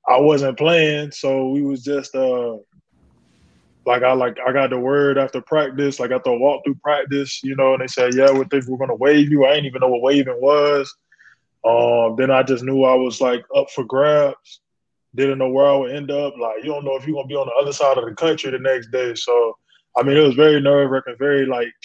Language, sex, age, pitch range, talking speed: English, male, 20-39, 125-145 Hz, 245 wpm